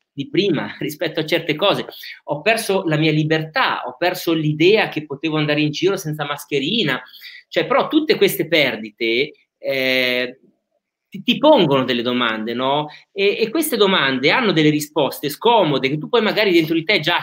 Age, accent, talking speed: 30-49, native, 170 wpm